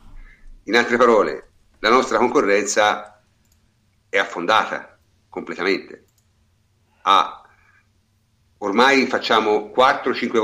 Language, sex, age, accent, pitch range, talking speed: Italian, male, 50-69, native, 100-130 Hz, 75 wpm